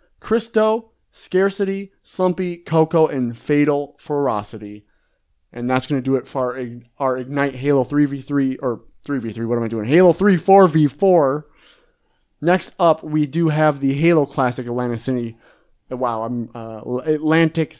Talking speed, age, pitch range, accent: 140 wpm, 30-49, 125-165 Hz, American